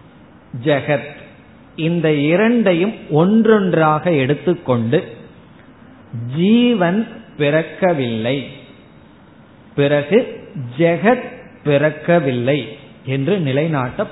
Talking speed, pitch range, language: 45 wpm, 125-175 Hz, Tamil